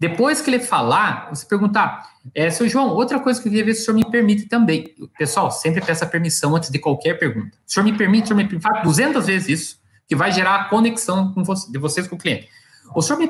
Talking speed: 255 wpm